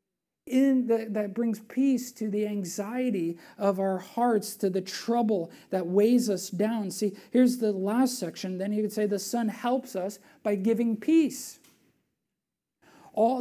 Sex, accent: male, American